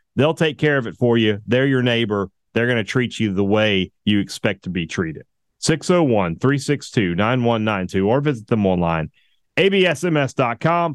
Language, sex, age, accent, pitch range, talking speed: English, male, 30-49, American, 105-135 Hz, 165 wpm